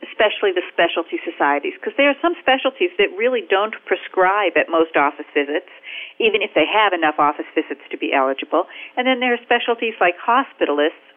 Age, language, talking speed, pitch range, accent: 50-69, English, 185 wpm, 165-235 Hz, American